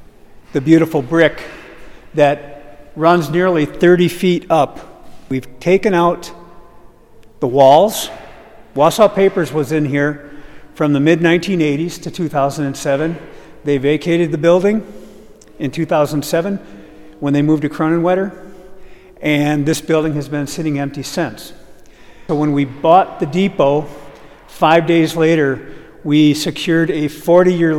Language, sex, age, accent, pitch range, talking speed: English, male, 50-69, American, 145-175 Hz, 120 wpm